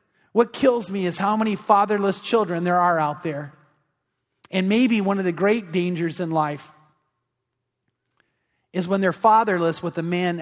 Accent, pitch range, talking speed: American, 150-185 Hz, 160 wpm